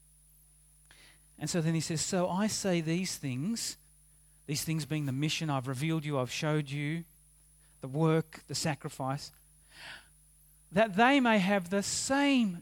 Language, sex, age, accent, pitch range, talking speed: English, male, 40-59, Australian, 150-205 Hz, 145 wpm